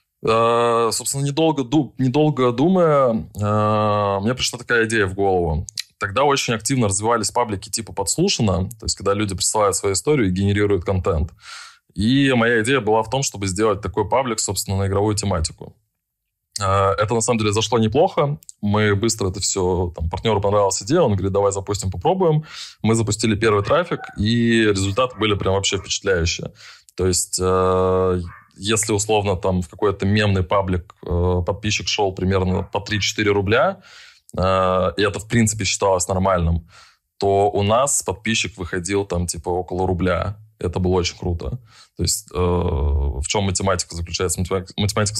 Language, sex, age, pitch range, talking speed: Russian, male, 20-39, 95-110 Hz, 150 wpm